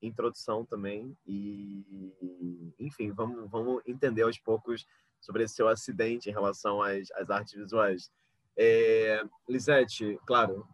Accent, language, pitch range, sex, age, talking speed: Brazilian, Portuguese, 110-135 Hz, male, 30-49, 130 wpm